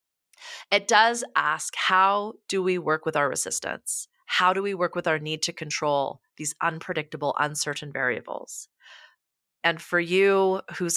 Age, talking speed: 30-49, 150 wpm